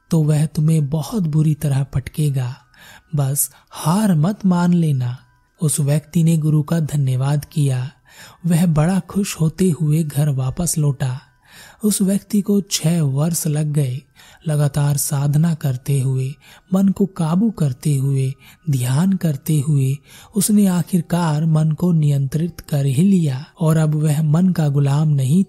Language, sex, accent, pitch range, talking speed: Hindi, male, native, 145-180 Hz, 140 wpm